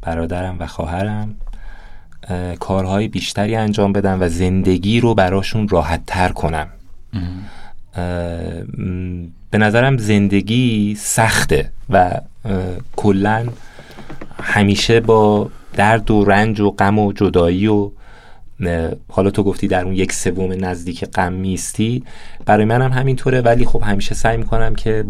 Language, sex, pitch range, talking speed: Persian, male, 90-110 Hz, 115 wpm